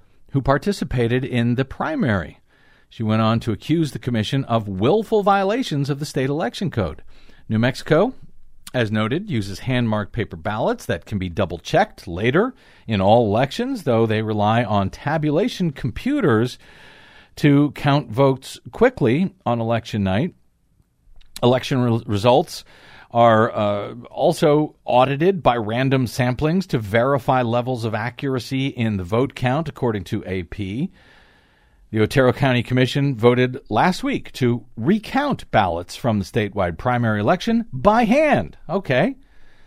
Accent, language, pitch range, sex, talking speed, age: American, English, 110-150 Hz, male, 135 wpm, 50-69